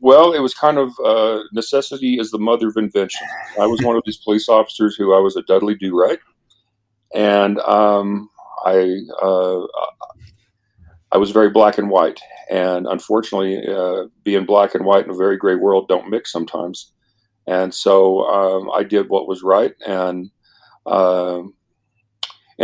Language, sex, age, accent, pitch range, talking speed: English, male, 40-59, American, 95-110 Hz, 160 wpm